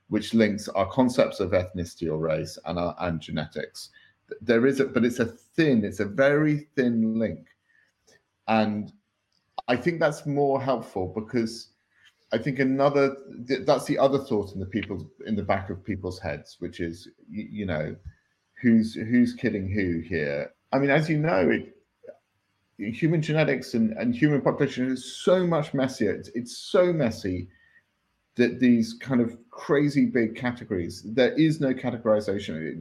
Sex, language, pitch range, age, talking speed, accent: male, English, 95-130 Hz, 40-59, 160 wpm, British